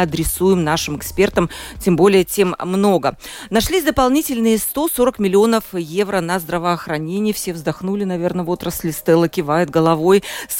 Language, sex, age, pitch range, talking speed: Russian, female, 40-59, 175-225 Hz, 130 wpm